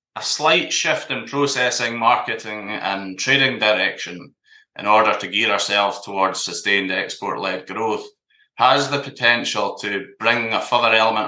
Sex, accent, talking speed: male, British, 140 wpm